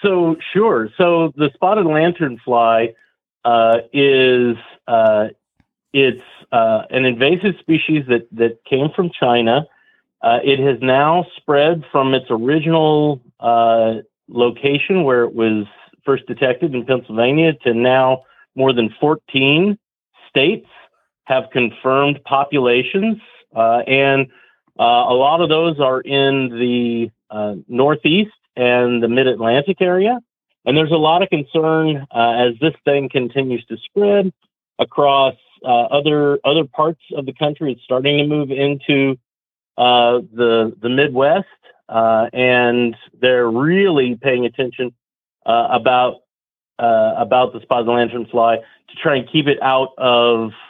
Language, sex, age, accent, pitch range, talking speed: English, male, 40-59, American, 120-150 Hz, 135 wpm